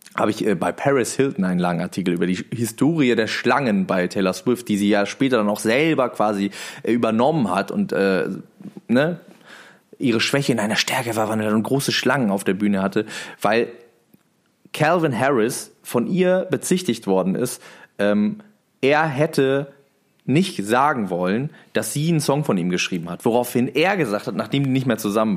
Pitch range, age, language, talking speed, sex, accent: 105-140 Hz, 20-39, German, 175 wpm, male, German